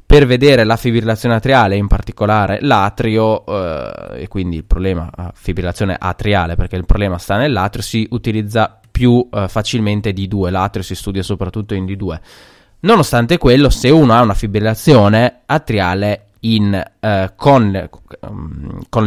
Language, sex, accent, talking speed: Italian, male, native, 145 wpm